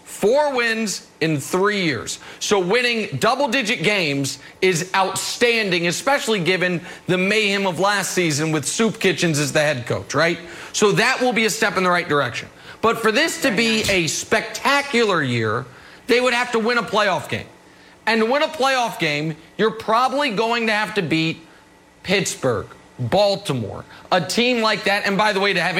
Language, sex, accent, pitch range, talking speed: English, male, American, 160-220 Hz, 180 wpm